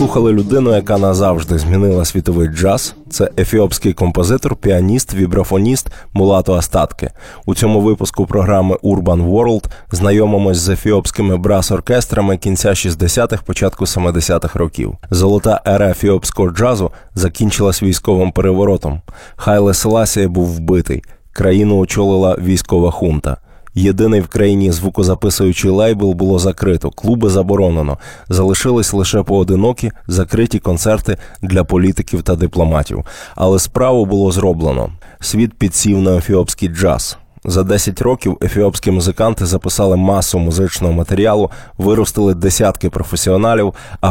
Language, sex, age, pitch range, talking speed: Ukrainian, male, 20-39, 90-105 Hz, 115 wpm